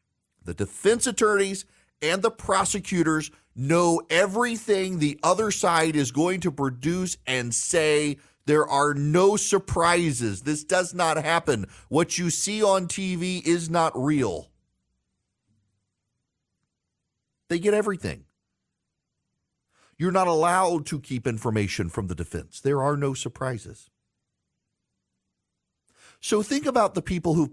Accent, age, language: American, 40-59, English